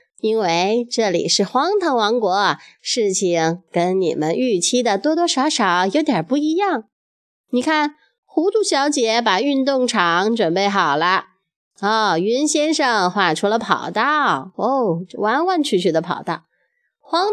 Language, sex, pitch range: Chinese, female, 215-315 Hz